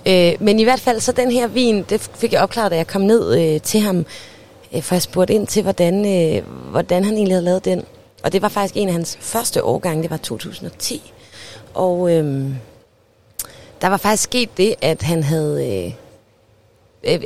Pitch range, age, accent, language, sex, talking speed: 170-210 Hz, 30-49, native, Danish, female, 190 wpm